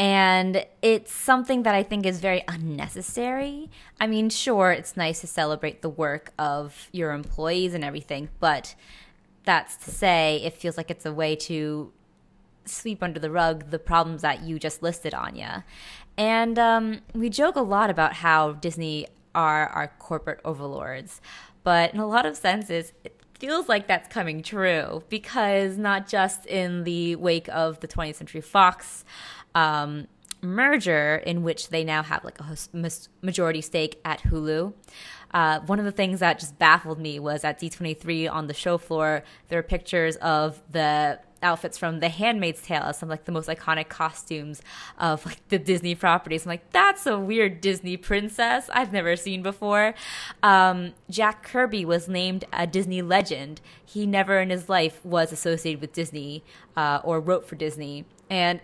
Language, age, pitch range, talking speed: English, 20-39, 160-195 Hz, 170 wpm